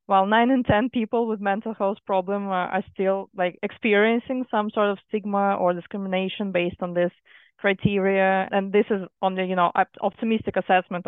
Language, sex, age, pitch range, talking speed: English, female, 20-39, 180-205 Hz, 170 wpm